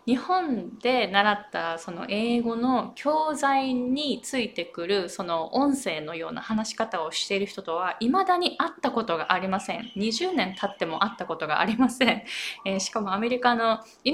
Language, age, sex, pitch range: Japanese, 20-39, female, 185-255 Hz